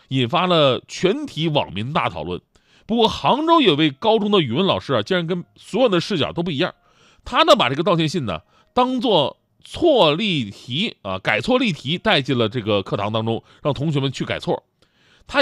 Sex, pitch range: male, 115-180 Hz